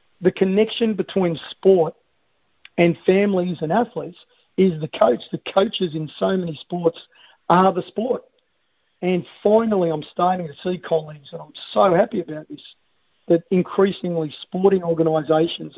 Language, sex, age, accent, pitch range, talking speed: English, male, 50-69, Australian, 160-185 Hz, 140 wpm